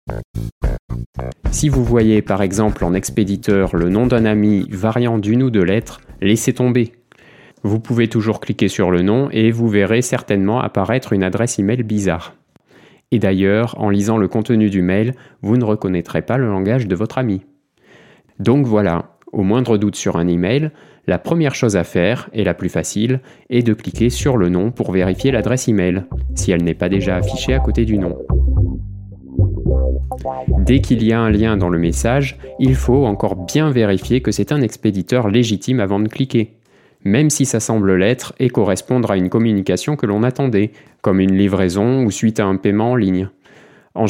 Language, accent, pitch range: French, French, 95-120 Hz